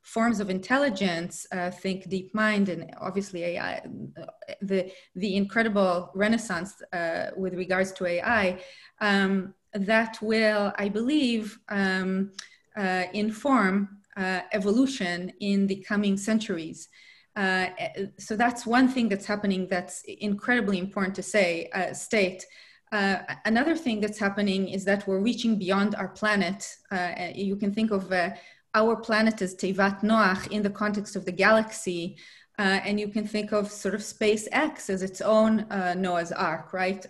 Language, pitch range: English, 185-215 Hz